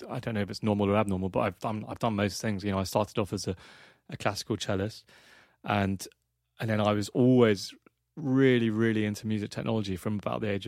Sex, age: male, 30-49